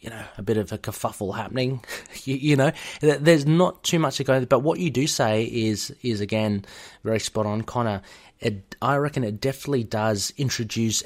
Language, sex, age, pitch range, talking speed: English, male, 30-49, 105-135 Hz, 195 wpm